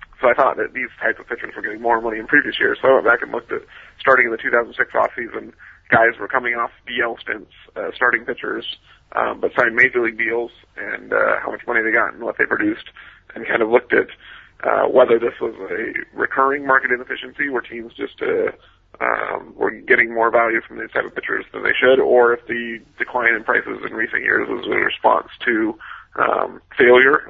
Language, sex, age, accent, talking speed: English, male, 30-49, American, 215 wpm